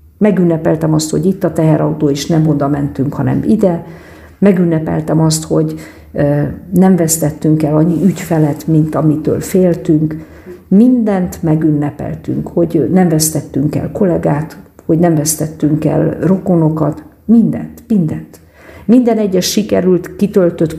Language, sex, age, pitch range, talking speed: Hungarian, female, 50-69, 155-190 Hz, 120 wpm